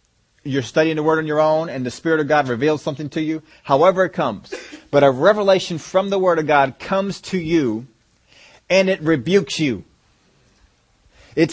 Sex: male